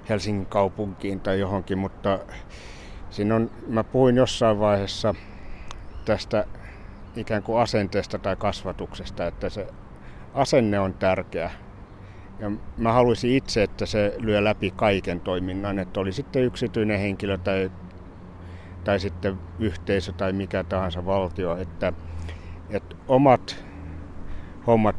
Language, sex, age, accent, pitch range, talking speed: Finnish, male, 60-79, native, 95-110 Hz, 120 wpm